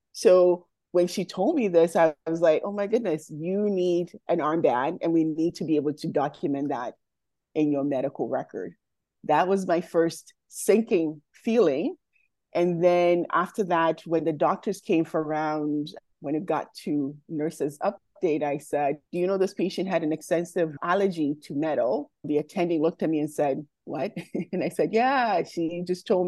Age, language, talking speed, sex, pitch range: 30-49, English, 180 wpm, female, 155-185 Hz